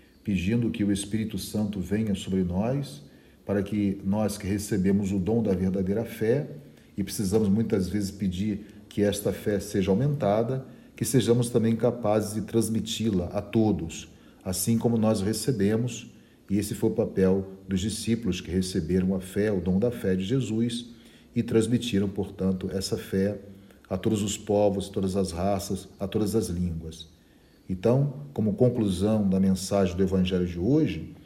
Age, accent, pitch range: 40-59, Brazilian, 95-115 Hz